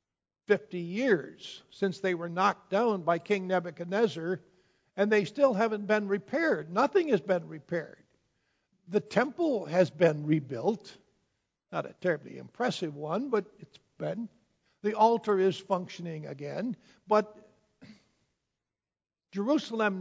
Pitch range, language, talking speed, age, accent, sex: 180-220 Hz, English, 120 wpm, 60-79, American, male